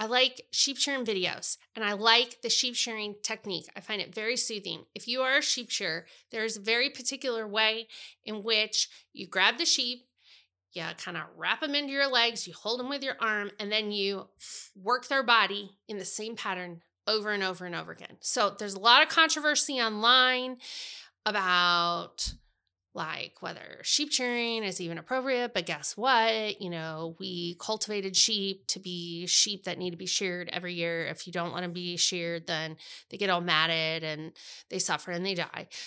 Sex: female